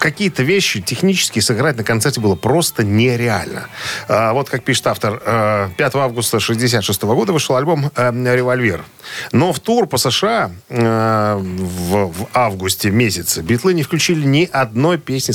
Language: Russian